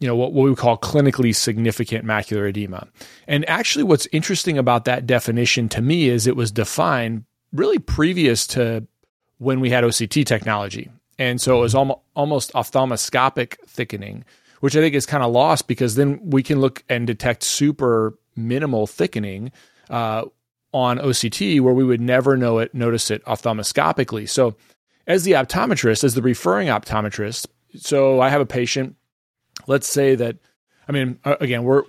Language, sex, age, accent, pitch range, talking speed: English, male, 30-49, American, 115-130 Hz, 165 wpm